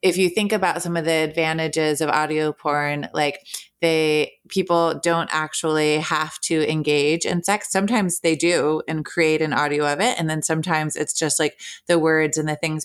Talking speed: 190 wpm